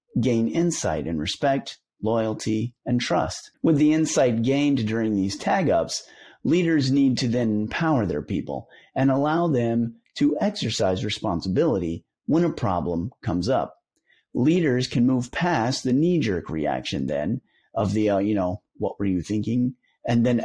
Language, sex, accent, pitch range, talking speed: English, male, American, 105-145 Hz, 150 wpm